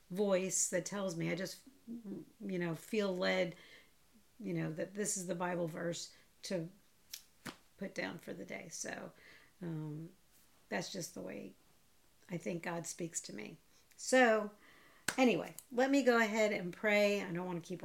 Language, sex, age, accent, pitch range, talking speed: English, female, 40-59, American, 170-205 Hz, 165 wpm